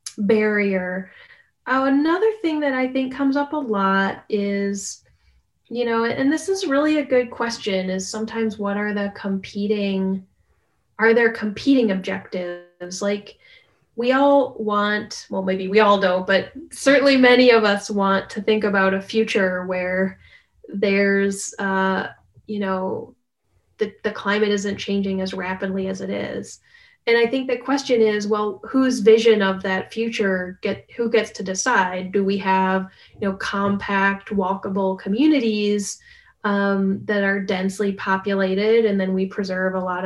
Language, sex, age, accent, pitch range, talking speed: English, female, 10-29, American, 190-230 Hz, 155 wpm